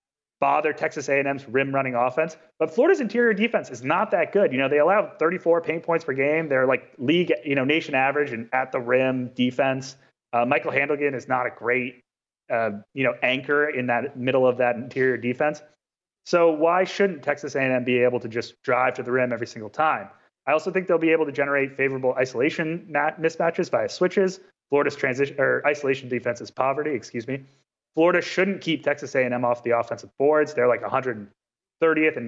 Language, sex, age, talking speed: English, male, 30-49, 190 wpm